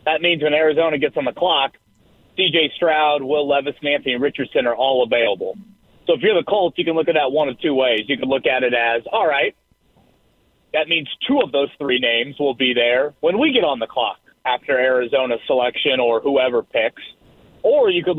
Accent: American